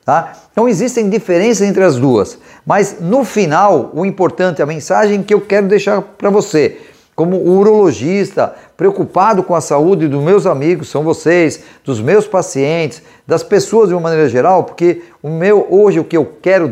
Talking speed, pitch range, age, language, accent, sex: 165 wpm, 160-210 Hz, 50-69, Portuguese, Brazilian, male